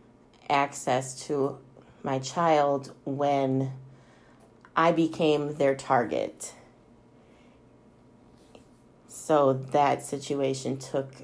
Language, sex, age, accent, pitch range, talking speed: English, female, 30-49, American, 135-155 Hz, 70 wpm